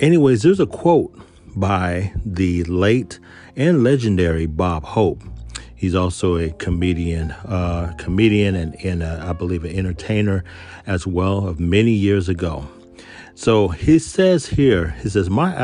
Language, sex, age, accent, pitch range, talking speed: English, male, 40-59, American, 85-110 Hz, 140 wpm